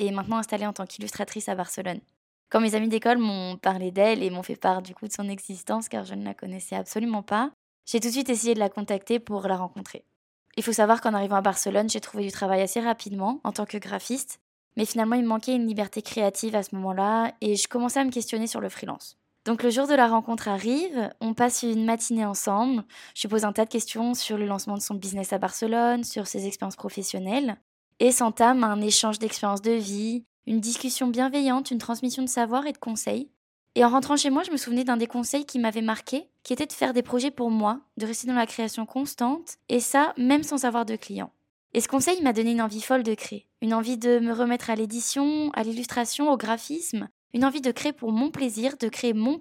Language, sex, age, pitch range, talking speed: French, female, 20-39, 210-245 Hz, 235 wpm